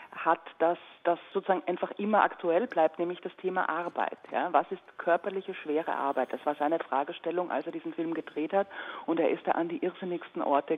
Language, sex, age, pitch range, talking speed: German, female, 40-59, 150-195 Hz, 195 wpm